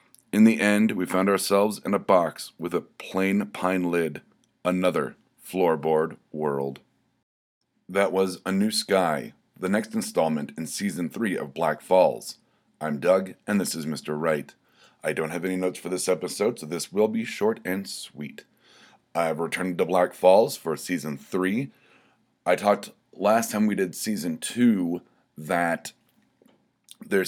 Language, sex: English, male